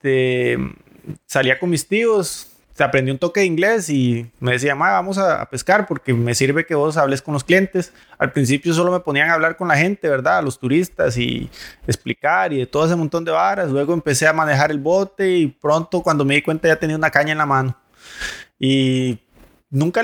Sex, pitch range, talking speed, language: male, 130-160 Hz, 215 wpm, English